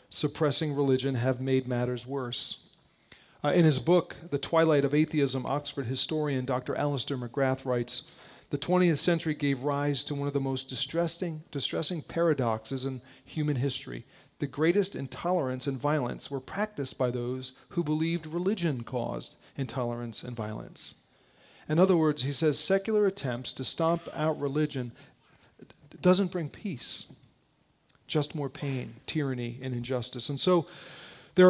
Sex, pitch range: male, 130-165 Hz